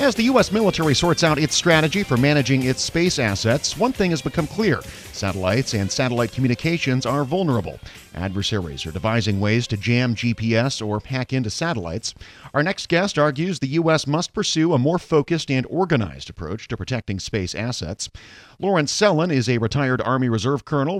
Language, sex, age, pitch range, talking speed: English, male, 40-59, 110-145 Hz, 175 wpm